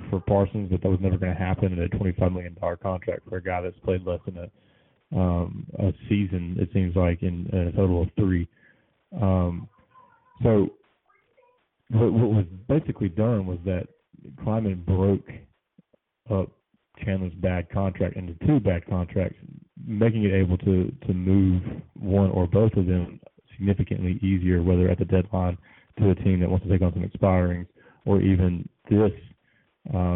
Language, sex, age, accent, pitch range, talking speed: English, male, 20-39, American, 90-100 Hz, 165 wpm